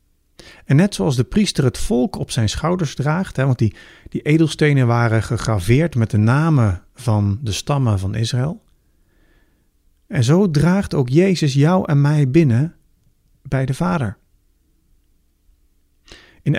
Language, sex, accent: Dutch, male, Dutch